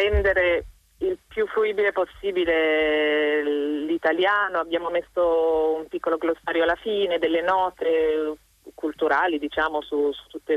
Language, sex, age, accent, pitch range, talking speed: Italian, female, 30-49, native, 160-210 Hz, 115 wpm